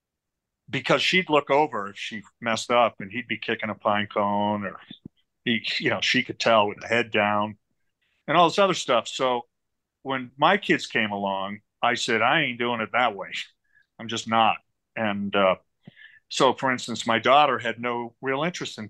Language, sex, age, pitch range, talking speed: English, male, 50-69, 105-145 Hz, 190 wpm